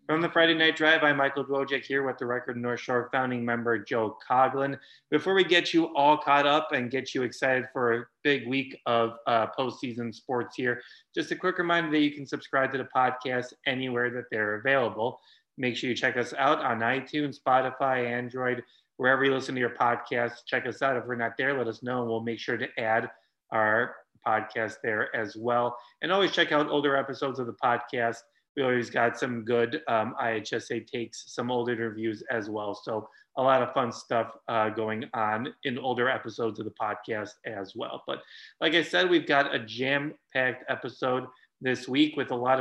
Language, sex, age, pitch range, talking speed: English, male, 30-49, 120-145 Hz, 205 wpm